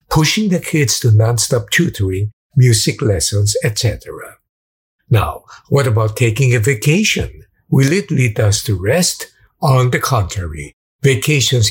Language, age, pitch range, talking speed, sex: English, 50-69, 110-140 Hz, 130 wpm, male